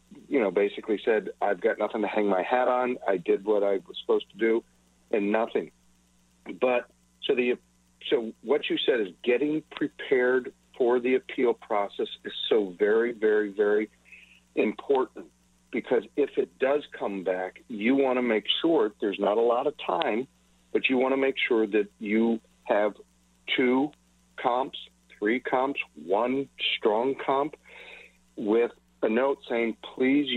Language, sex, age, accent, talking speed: English, male, 60-79, American, 160 wpm